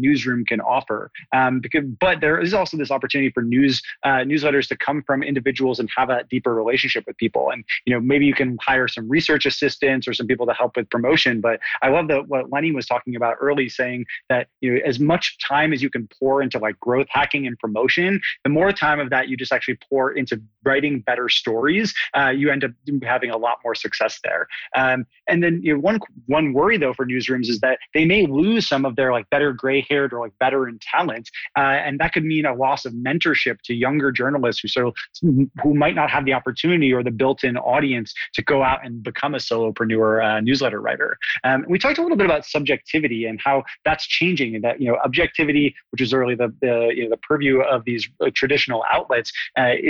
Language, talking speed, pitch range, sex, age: English, 225 wpm, 125-145 Hz, male, 20-39